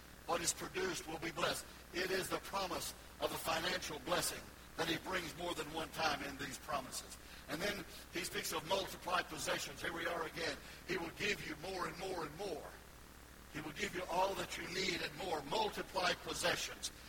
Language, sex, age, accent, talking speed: English, male, 60-79, American, 195 wpm